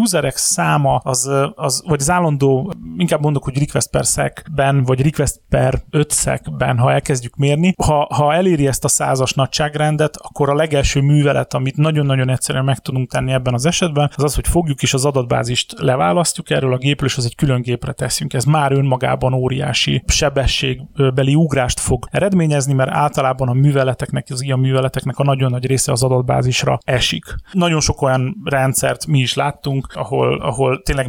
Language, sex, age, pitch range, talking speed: Hungarian, male, 30-49, 130-150 Hz, 165 wpm